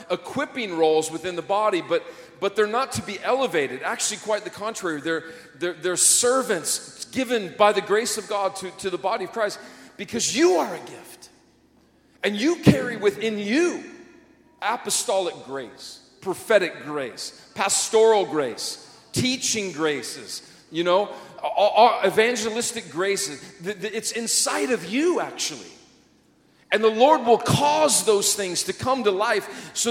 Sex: male